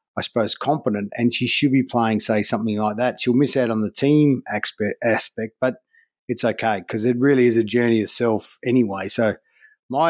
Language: English